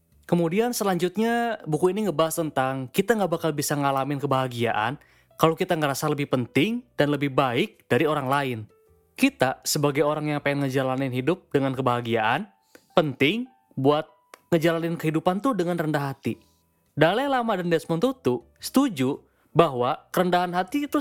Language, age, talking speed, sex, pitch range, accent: Indonesian, 20-39, 145 wpm, male, 135-190 Hz, native